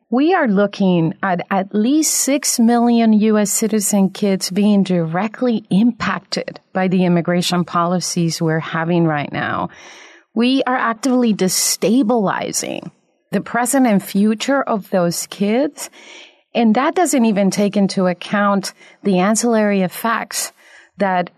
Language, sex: English, female